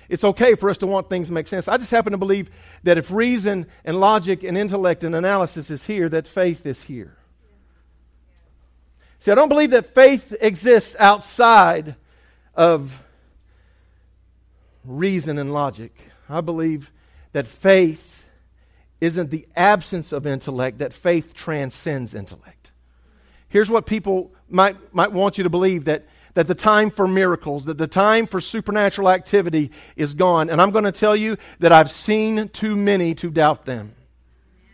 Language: English